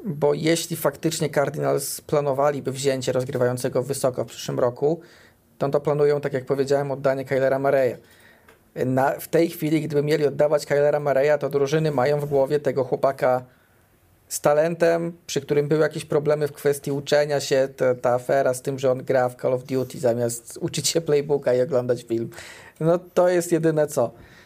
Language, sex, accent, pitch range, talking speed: Polish, male, native, 135-160 Hz, 175 wpm